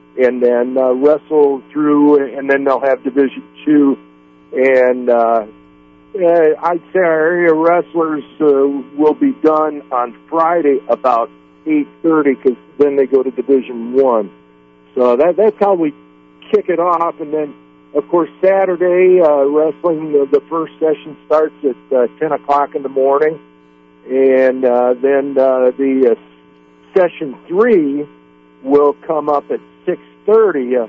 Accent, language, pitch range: American, English, 120-155 Hz